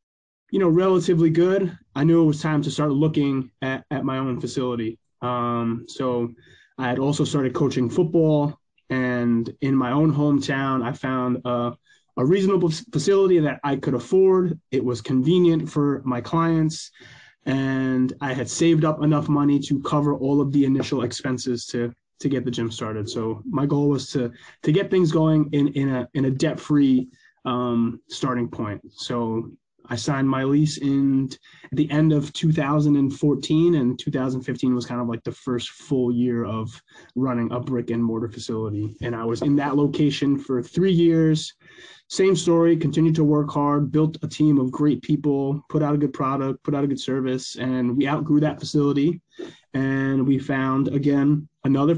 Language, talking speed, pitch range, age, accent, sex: English, 175 wpm, 125-150 Hz, 20-39, American, male